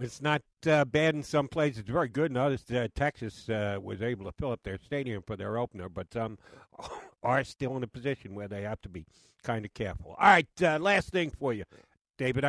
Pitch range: 115-170 Hz